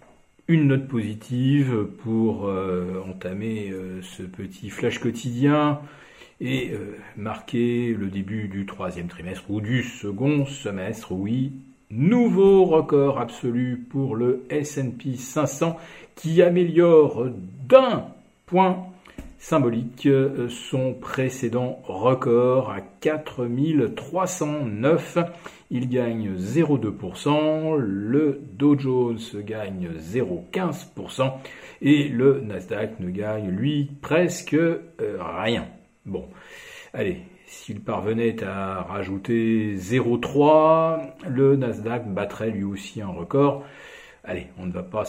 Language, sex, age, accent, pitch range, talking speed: French, male, 50-69, French, 110-150 Hz, 100 wpm